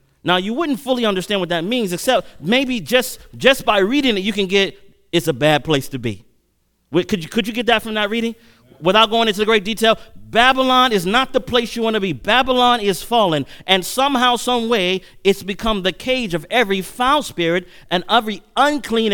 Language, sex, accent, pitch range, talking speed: English, male, American, 145-215 Hz, 205 wpm